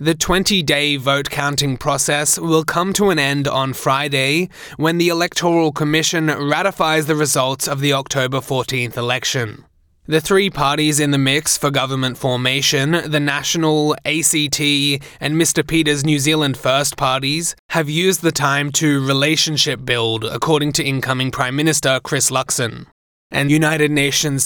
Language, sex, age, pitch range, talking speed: English, male, 20-39, 140-160 Hz, 145 wpm